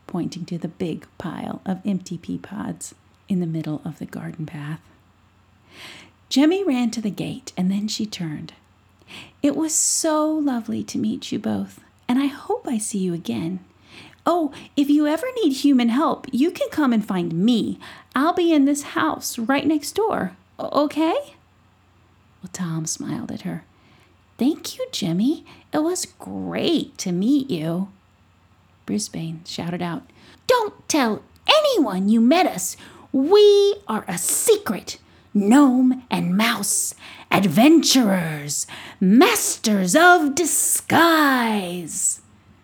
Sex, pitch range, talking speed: female, 175-290 Hz, 135 wpm